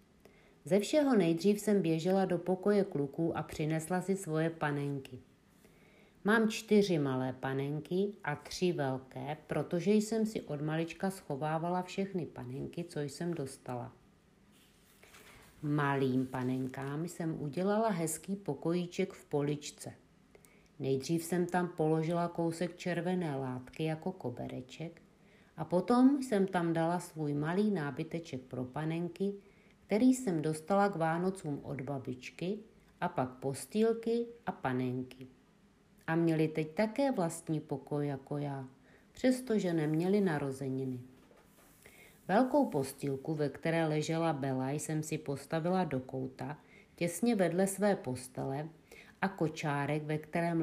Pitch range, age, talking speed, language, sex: 145-195 Hz, 50-69, 120 wpm, Czech, female